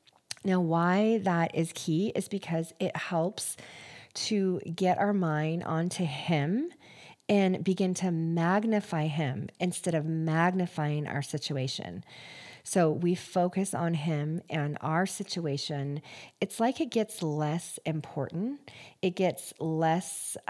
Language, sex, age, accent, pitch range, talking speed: English, female, 40-59, American, 155-195 Hz, 125 wpm